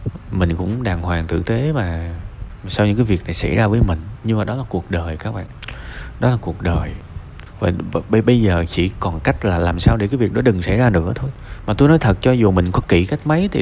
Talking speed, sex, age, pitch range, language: 265 wpm, male, 20-39, 95-125 Hz, Vietnamese